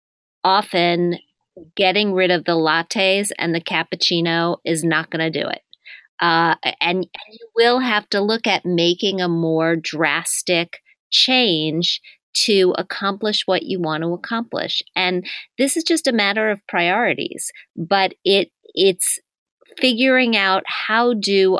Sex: female